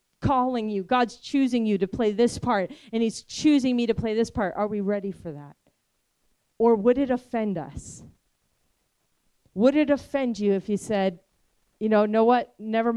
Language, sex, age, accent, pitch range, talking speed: English, female, 40-59, American, 195-240 Hz, 180 wpm